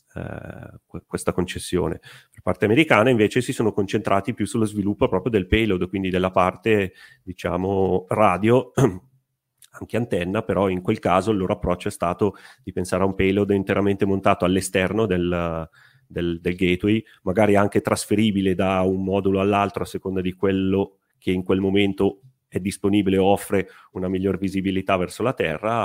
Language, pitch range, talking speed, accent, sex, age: Italian, 90-110 Hz, 160 wpm, native, male, 30-49